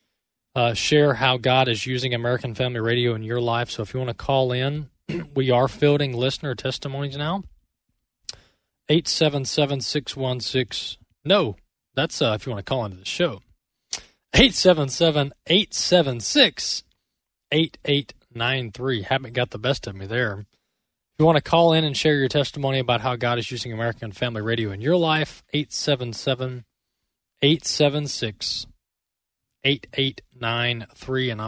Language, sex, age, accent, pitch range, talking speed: English, male, 20-39, American, 115-145 Hz, 145 wpm